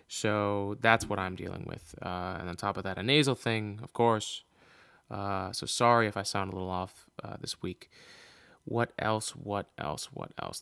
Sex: male